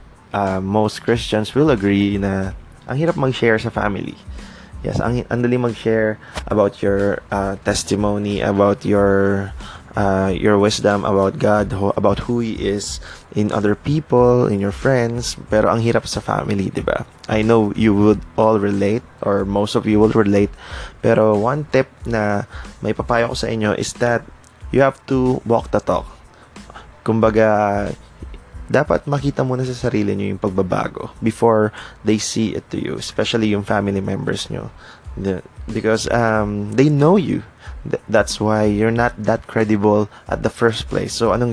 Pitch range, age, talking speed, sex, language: 100-115 Hz, 20-39, 155 wpm, male, Filipino